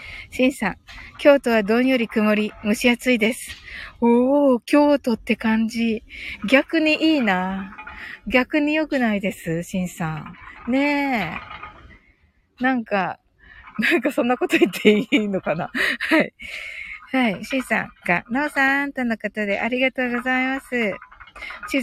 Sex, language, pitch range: female, Japanese, 210-280 Hz